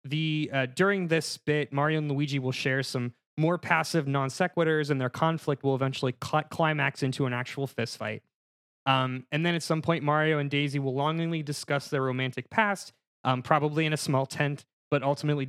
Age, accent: 20-39, American